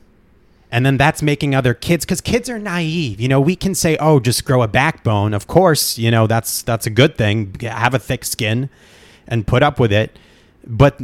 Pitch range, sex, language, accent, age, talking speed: 110-140 Hz, male, English, American, 30-49, 210 wpm